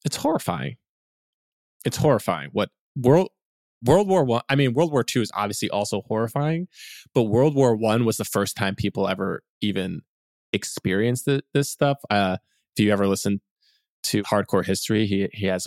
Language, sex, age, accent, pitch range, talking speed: English, male, 20-39, American, 100-125 Hz, 170 wpm